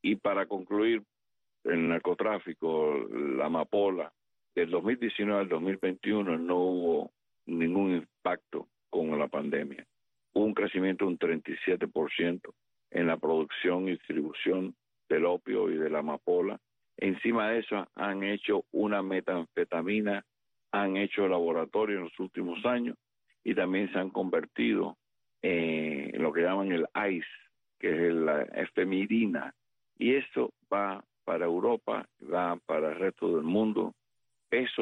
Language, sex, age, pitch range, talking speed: Spanish, male, 60-79, 90-115 Hz, 135 wpm